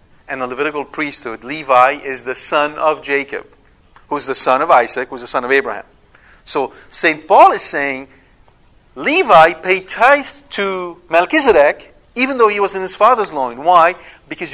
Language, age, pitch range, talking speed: English, 50-69, 135-175 Hz, 175 wpm